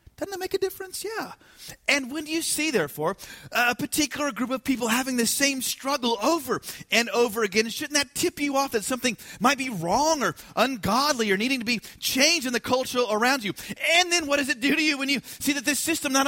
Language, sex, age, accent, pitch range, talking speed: English, male, 30-49, American, 230-300 Hz, 230 wpm